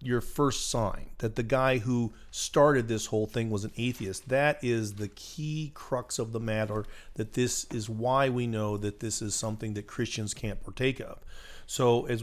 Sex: male